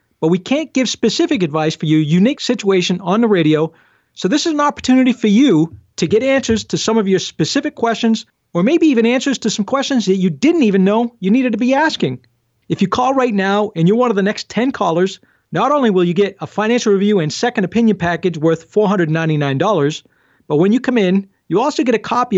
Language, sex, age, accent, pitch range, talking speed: English, male, 40-59, American, 175-235 Hz, 225 wpm